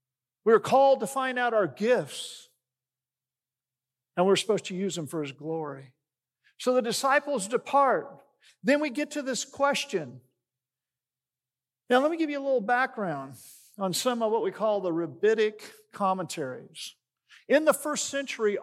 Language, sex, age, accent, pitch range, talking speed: English, male, 50-69, American, 175-275 Hz, 160 wpm